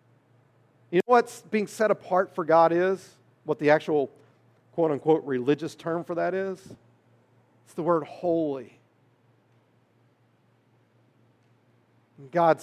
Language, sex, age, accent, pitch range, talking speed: English, male, 40-59, American, 120-170 Hz, 110 wpm